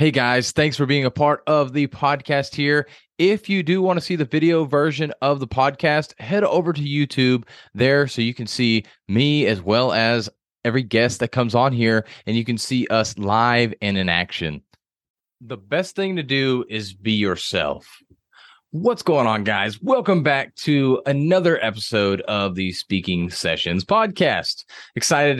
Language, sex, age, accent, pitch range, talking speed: English, male, 30-49, American, 115-150 Hz, 175 wpm